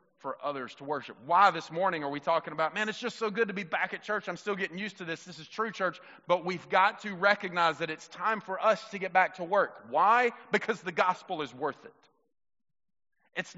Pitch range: 180-220 Hz